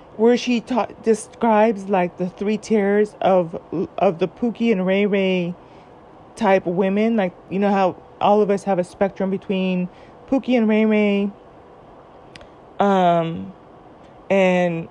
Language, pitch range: English, 185-215 Hz